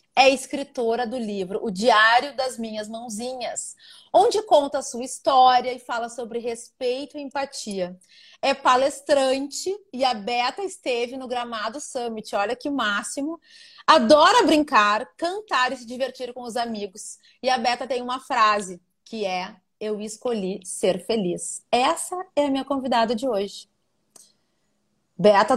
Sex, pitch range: female, 220-290 Hz